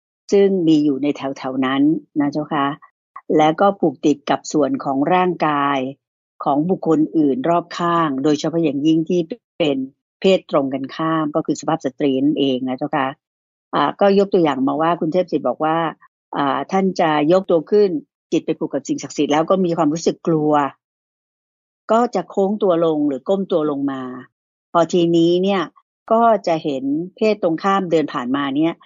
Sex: female